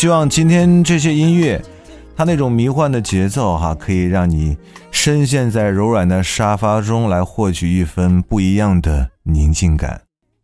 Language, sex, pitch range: Chinese, male, 85-110 Hz